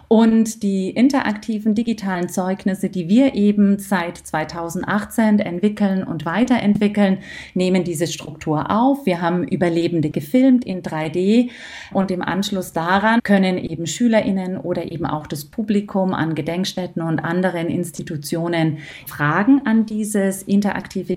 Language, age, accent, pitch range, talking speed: German, 40-59, German, 165-210 Hz, 125 wpm